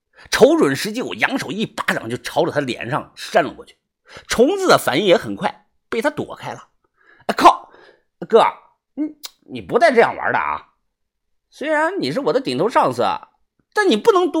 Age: 50-69